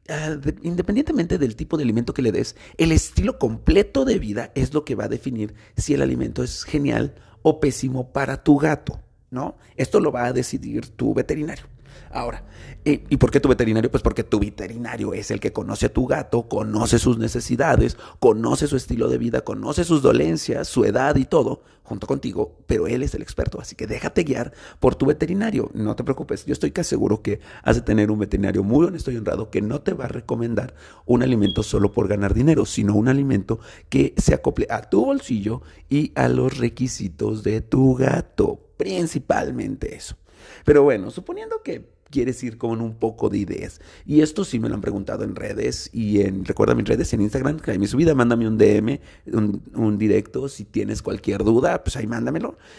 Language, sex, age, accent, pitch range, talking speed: Spanish, male, 40-59, Mexican, 110-155 Hz, 200 wpm